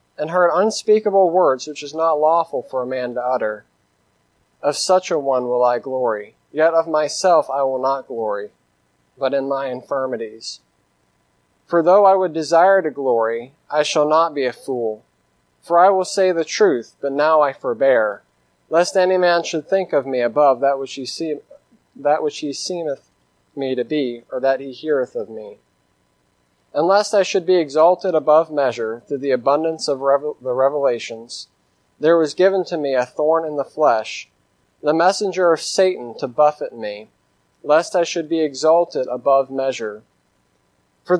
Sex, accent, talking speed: male, American, 170 wpm